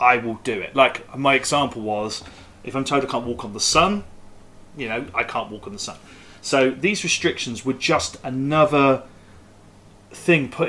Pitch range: 110-160 Hz